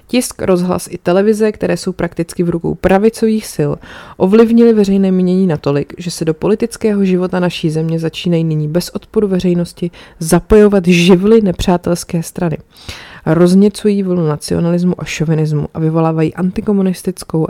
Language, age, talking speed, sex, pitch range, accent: Czech, 30-49, 135 wpm, female, 160-190 Hz, native